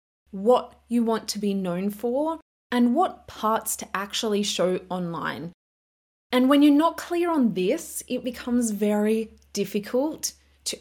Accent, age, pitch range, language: Australian, 20-39, 195-250 Hz, English